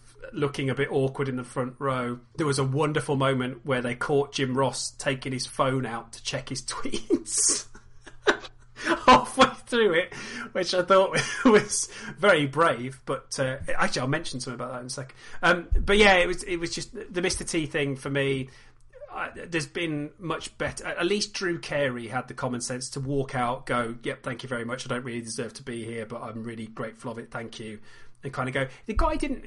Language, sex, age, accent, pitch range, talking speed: English, male, 30-49, British, 125-170 Hz, 210 wpm